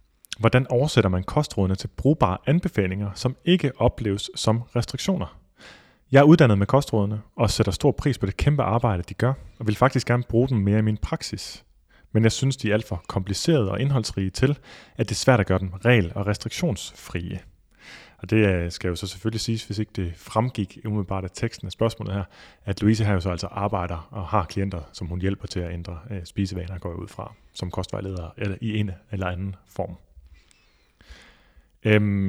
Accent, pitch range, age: native, 95-120 Hz, 30-49